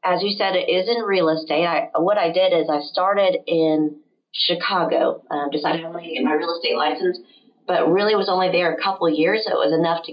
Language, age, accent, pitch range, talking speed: English, 30-49, American, 150-175 Hz, 235 wpm